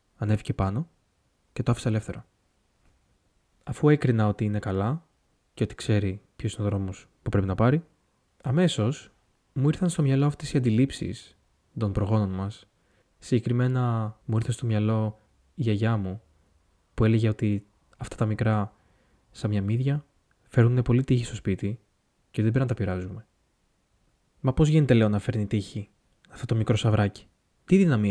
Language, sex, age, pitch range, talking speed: Greek, male, 20-39, 100-125 Hz, 160 wpm